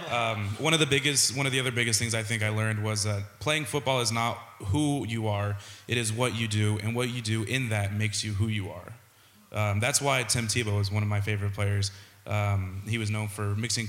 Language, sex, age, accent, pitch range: Japanese, male, 20-39, American, 100-115 Hz